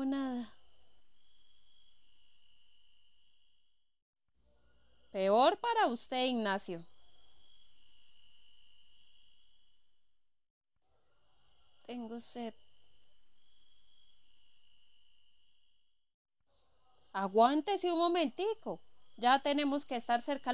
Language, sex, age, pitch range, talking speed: Spanish, female, 20-39, 175-280 Hz, 45 wpm